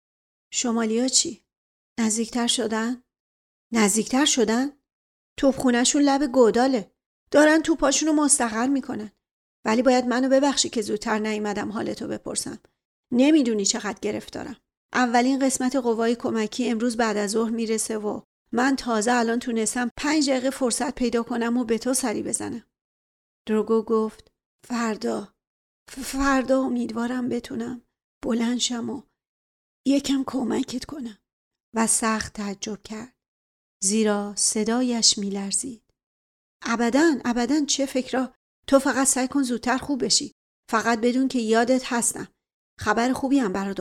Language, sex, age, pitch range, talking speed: Persian, female, 40-59, 220-260 Hz, 115 wpm